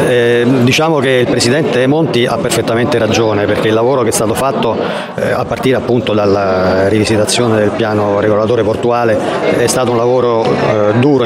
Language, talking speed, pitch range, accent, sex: Italian, 170 wpm, 110-130 Hz, native, male